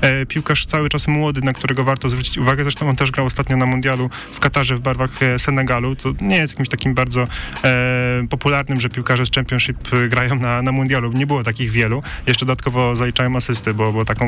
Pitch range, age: 130-150 Hz, 20-39